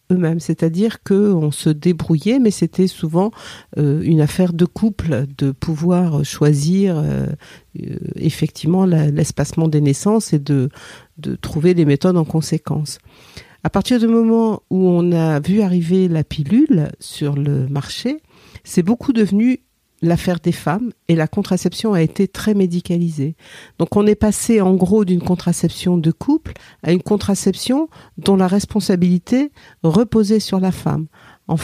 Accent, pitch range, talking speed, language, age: French, 155-195 Hz, 140 wpm, French, 50-69